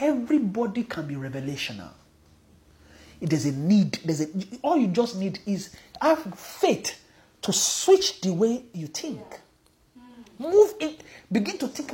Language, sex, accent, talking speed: English, male, Nigerian, 140 wpm